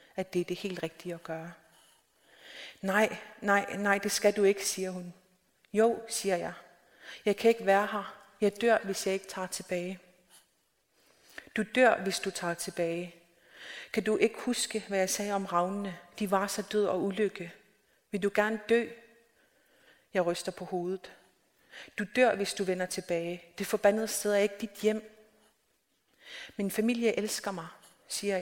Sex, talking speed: female, 165 wpm